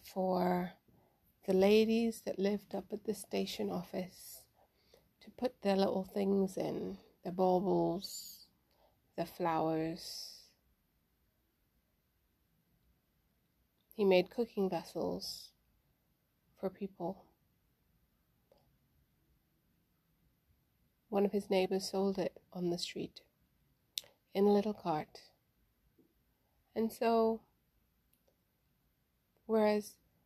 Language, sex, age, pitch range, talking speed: English, female, 30-49, 185-205 Hz, 85 wpm